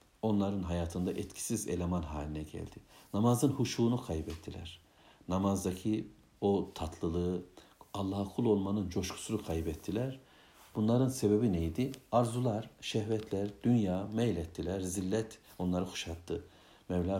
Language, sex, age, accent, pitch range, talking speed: Turkish, male, 60-79, native, 90-100 Hz, 100 wpm